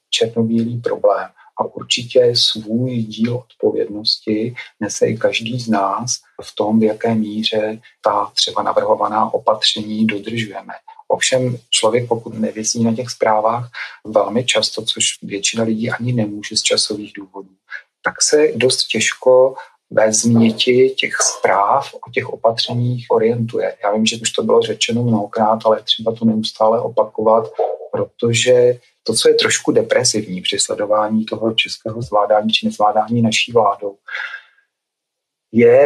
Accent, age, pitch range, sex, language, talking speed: native, 40-59, 110-135 Hz, male, Czech, 135 wpm